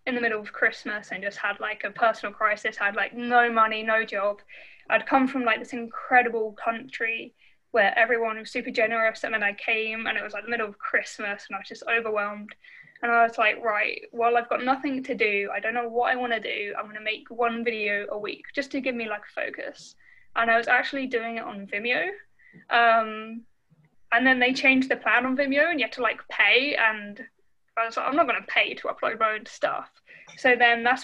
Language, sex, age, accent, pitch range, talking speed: English, female, 10-29, British, 220-265 Hz, 225 wpm